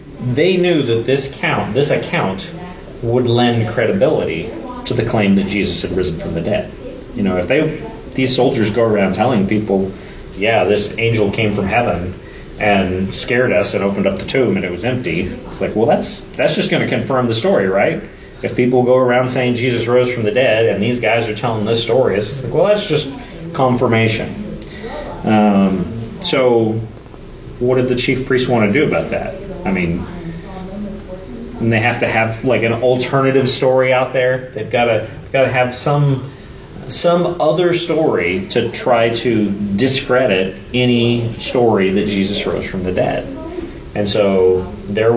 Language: English